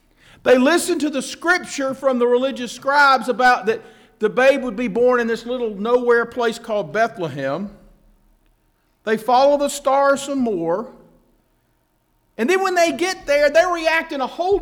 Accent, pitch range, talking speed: American, 205-285 Hz, 165 wpm